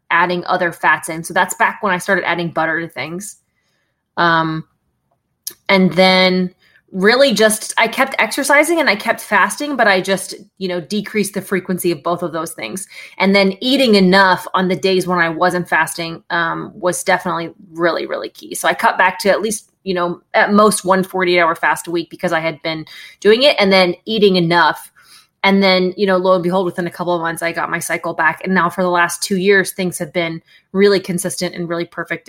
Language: English